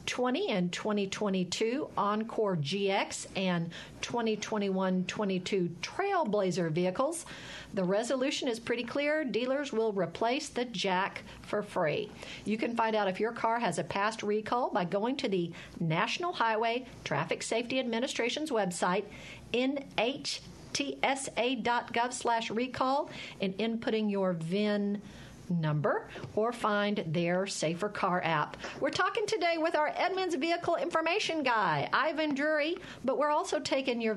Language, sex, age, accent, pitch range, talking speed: English, female, 50-69, American, 200-280 Hz, 125 wpm